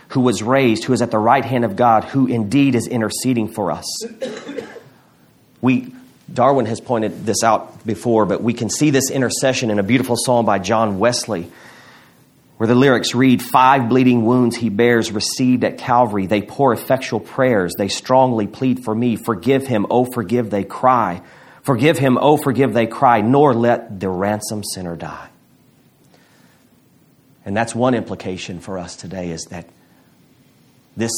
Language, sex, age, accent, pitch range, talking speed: English, male, 40-59, American, 100-130 Hz, 165 wpm